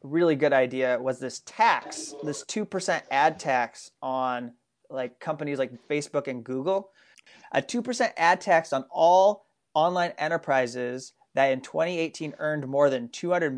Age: 30-49